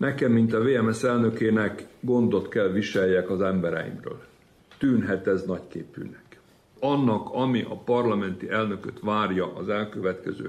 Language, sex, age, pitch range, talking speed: Hungarian, male, 60-79, 105-135 Hz, 125 wpm